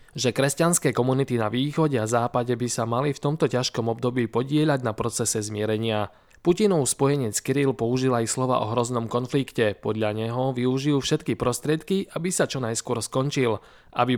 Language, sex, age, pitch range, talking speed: Slovak, male, 20-39, 115-150 Hz, 160 wpm